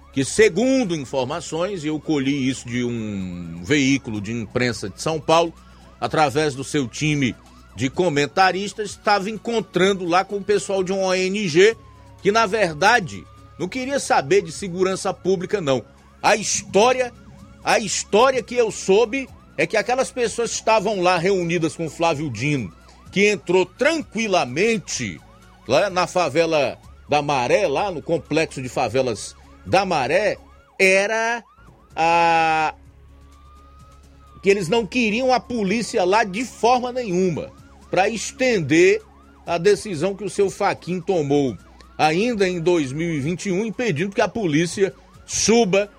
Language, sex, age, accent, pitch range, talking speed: Portuguese, male, 40-59, Brazilian, 145-205 Hz, 135 wpm